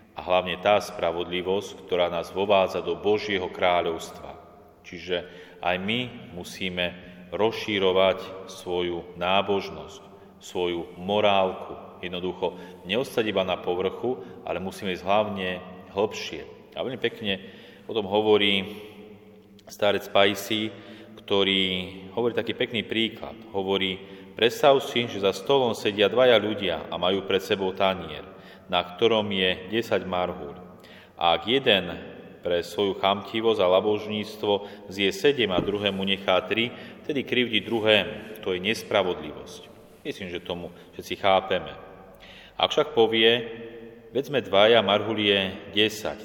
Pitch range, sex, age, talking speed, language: 95-105 Hz, male, 30-49, 120 wpm, Slovak